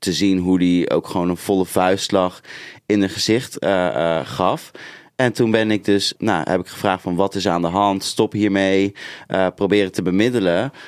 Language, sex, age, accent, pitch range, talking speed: Dutch, male, 20-39, Dutch, 90-110 Hz, 205 wpm